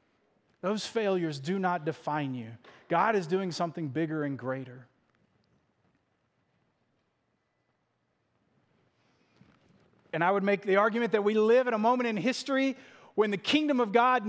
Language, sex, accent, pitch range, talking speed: English, male, American, 160-225 Hz, 135 wpm